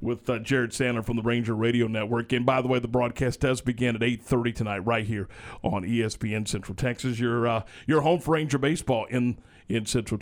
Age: 50-69